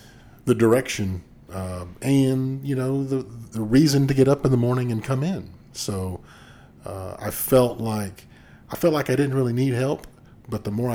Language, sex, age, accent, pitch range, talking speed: English, male, 40-59, American, 100-125 Hz, 185 wpm